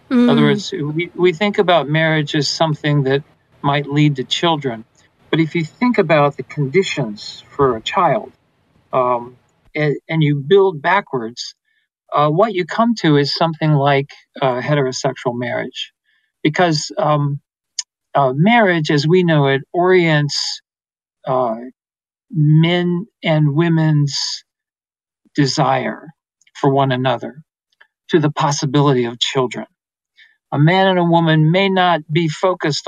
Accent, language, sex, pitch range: American, English, male, 140-175 Hz